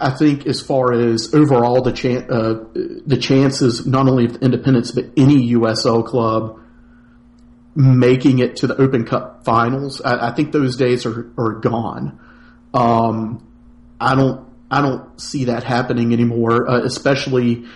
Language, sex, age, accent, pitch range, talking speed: English, male, 40-59, American, 115-130 Hz, 150 wpm